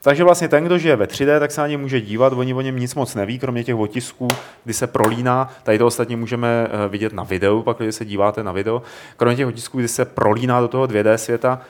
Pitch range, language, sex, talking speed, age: 105-140 Hz, Czech, male, 240 wpm, 30-49